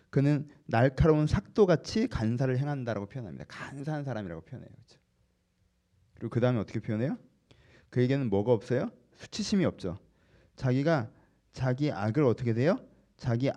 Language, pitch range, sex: Korean, 115-180 Hz, male